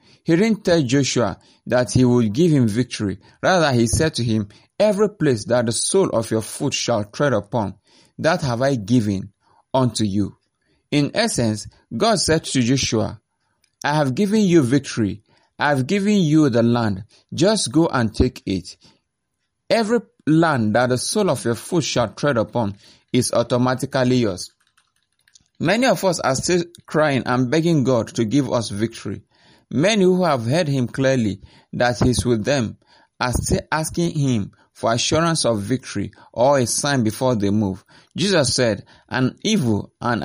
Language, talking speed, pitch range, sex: English, 165 wpm, 115-150 Hz, male